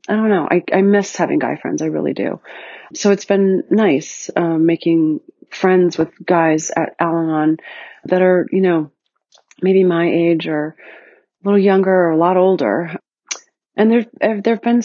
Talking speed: 175 wpm